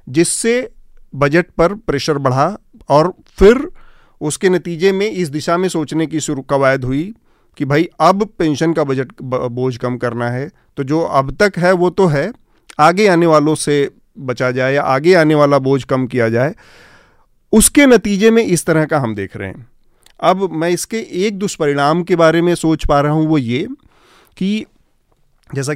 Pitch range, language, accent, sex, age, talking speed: 125-175 Hz, Hindi, native, male, 40-59, 175 wpm